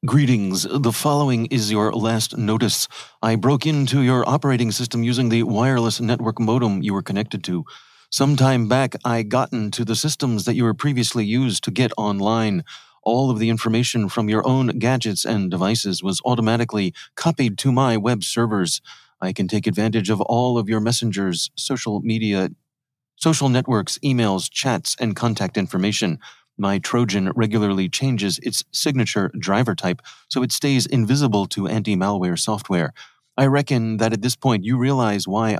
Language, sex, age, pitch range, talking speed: English, male, 30-49, 105-130 Hz, 165 wpm